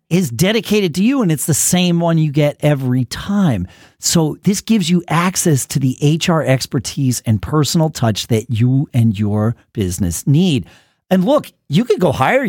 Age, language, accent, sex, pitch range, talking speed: 40-59, English, American, male, 115-180 Hz, 180 wpm